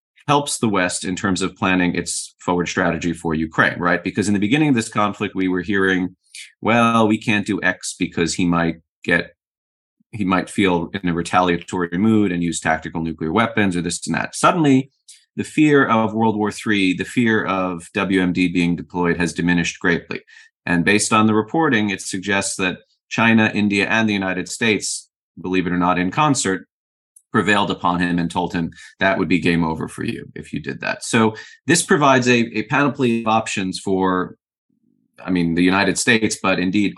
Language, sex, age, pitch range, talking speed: English, male, 30-49, 90-110 Hz, 190 wpm